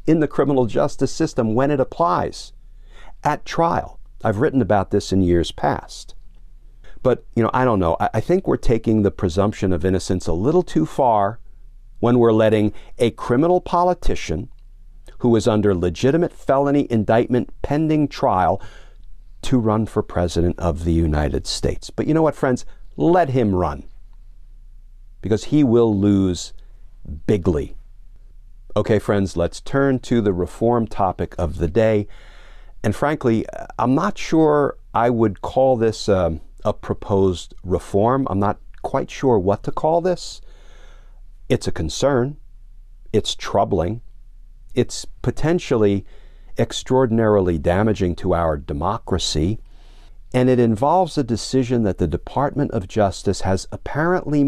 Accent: American